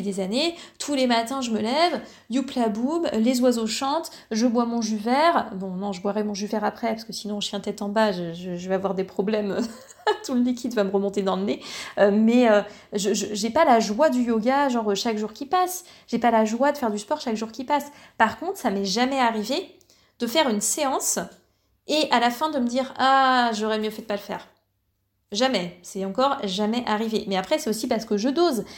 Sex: female